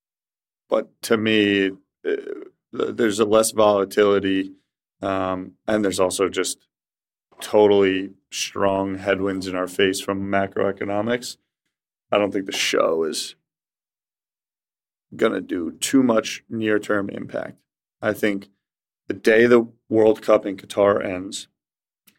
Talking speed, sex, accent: 115 wpm, male, American